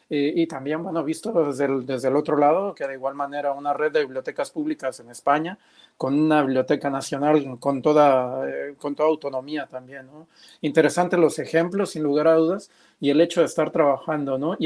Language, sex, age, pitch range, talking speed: Spanish, male, 40-59, 140-165 Hz, 200 wpm